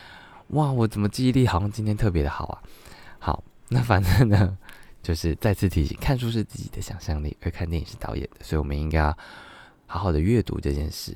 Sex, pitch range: male, 85-115 Hz